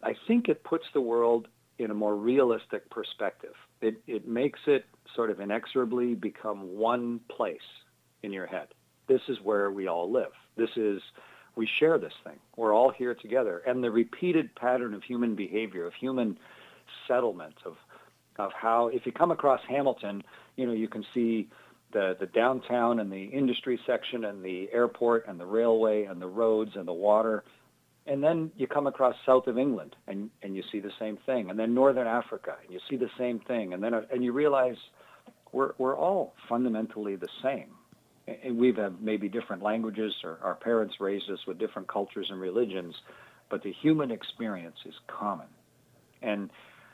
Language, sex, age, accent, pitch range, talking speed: English, male, 40-59, American, 100-125 Hz, 180 wpm